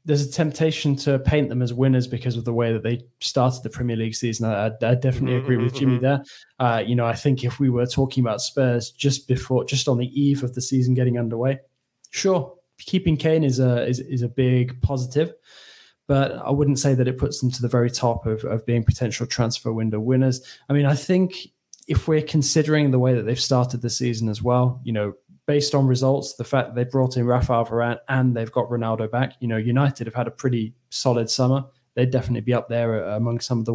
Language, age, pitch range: English, 10-29, 120-135 Hz